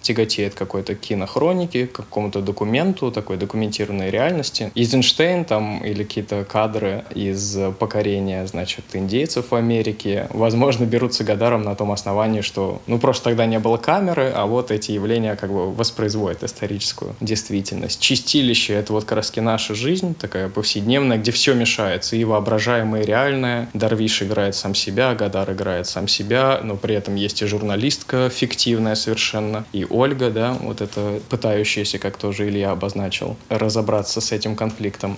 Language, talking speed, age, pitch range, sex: Russian, 150 wpm, 20-39, 105-120 Hz, male